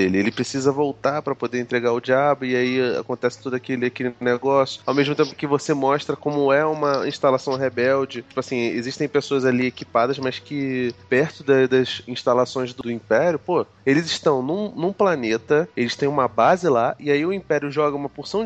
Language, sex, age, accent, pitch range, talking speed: Portuguese, male, 20-39, Brazilian, 125-175 Hz, 190 wpm